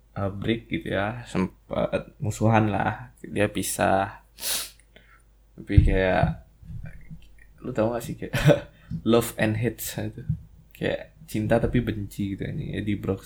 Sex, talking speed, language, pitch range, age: male, 120 wpm, Indonesian, 100-115 Hz, 20-39